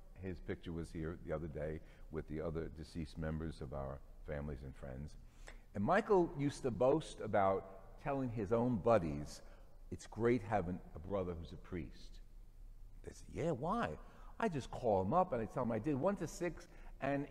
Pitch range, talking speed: 90-145 Hz, 185 wpm